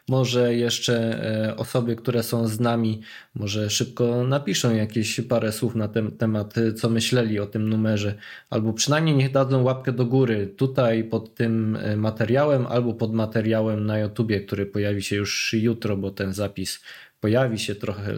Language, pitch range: Polish, 105-125 Hz